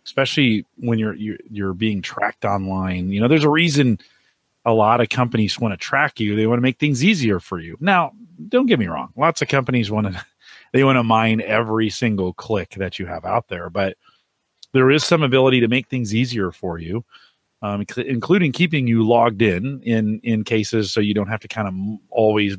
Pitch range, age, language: 105-135 Hz, 40-59, English